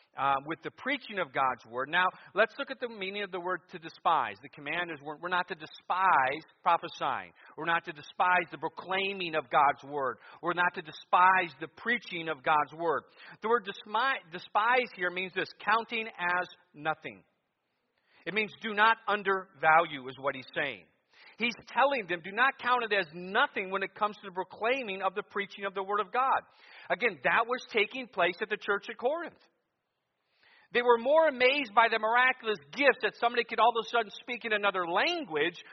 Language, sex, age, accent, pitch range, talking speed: English, male, 40-59, American, 180-250 Hz, 190 wpm